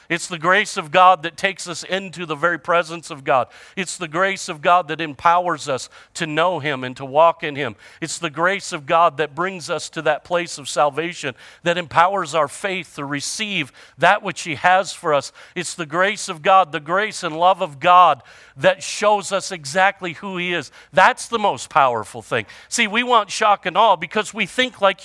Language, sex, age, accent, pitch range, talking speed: English, male, 50-69, American, 145-200 Hz, 210 wpm